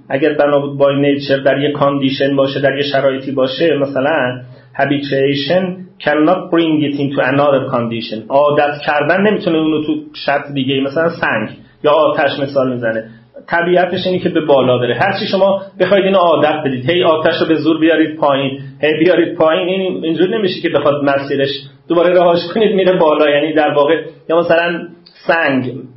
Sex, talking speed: male, 170 wpm